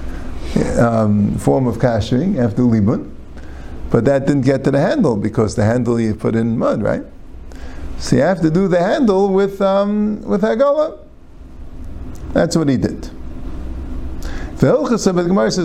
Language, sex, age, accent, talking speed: English, male, 50-69, American, 150 wpm